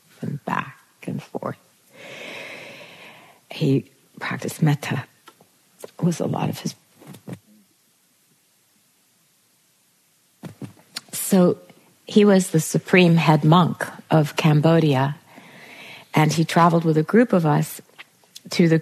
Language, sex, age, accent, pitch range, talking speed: English, female, 60-79, American, 150-175 Hz, 100 wpm